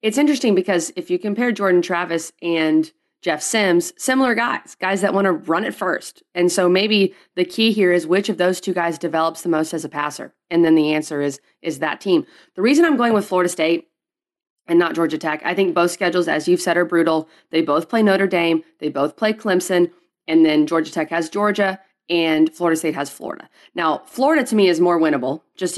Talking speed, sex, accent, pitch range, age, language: 220 wpm, female, American, 165-220 Hz, 30-49, English